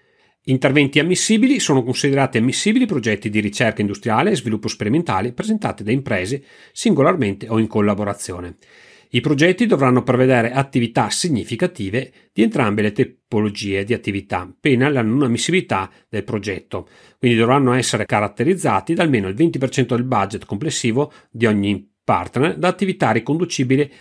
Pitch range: 105-150 Hz